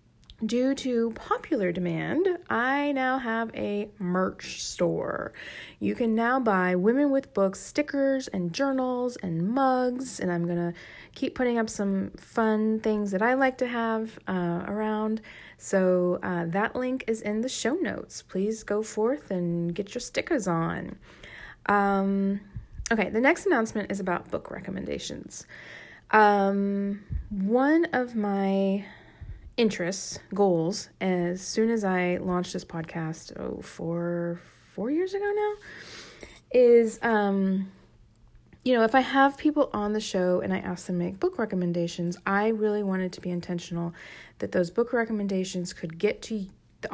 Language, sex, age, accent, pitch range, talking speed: English, female, 30-49, American, 180-235 Hz, 150 wpm